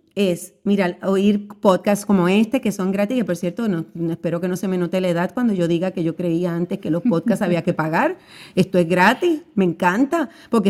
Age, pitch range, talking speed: 40-59, 195-250 Hz, 220 wpm